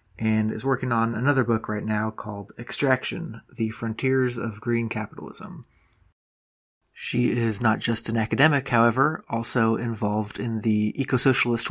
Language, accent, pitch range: English, American, 110-125 Hz